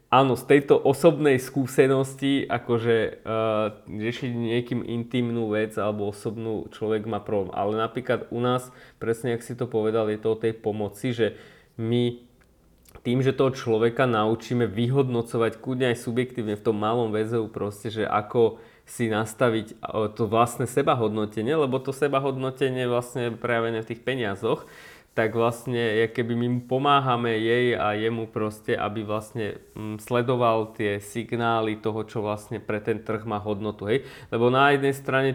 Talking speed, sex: 155 wpm, male